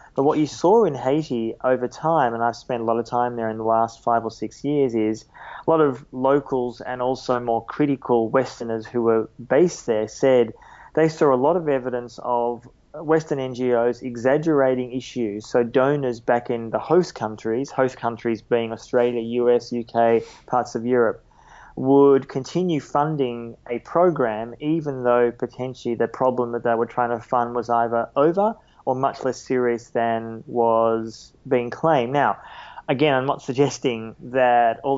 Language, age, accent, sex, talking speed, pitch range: English, 20-39, Australian, male, 170 wpm, 115-135 Hz